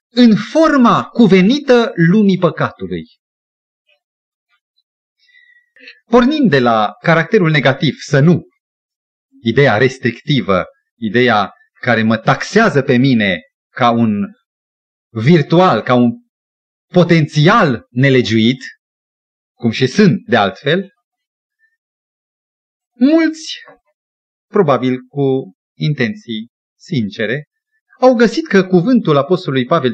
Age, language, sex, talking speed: 30-49, Romanian, male, 85 wpm